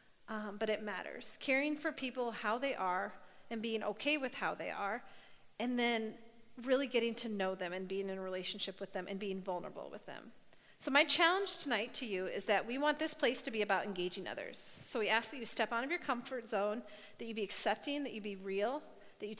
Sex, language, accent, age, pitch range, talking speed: female, English, American, 30-49, 195-260 Hz, 230 wpm